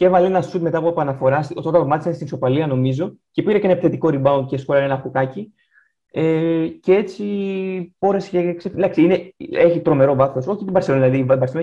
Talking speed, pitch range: 190 wpm, 135-175 Hz